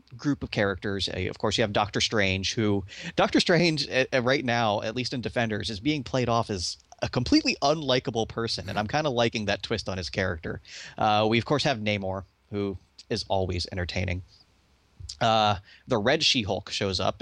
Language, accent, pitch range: English, American, 100-150 Hz